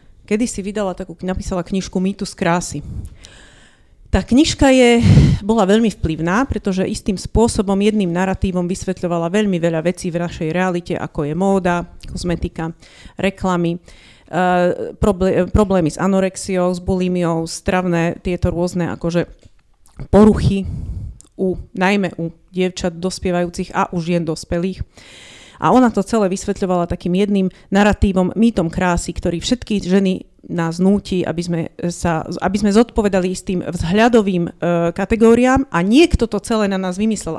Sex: female